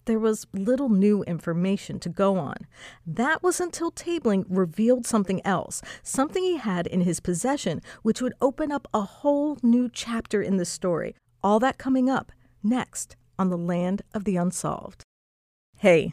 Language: English